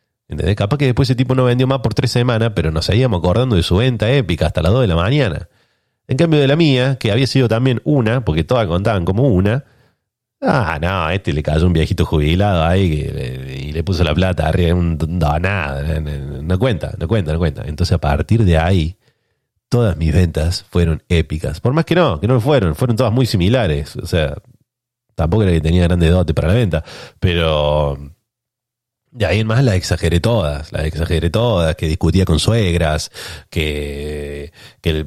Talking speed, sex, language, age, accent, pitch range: 205 wpm, male, Spanish, 30-49, Argentinian, 80-120 Hz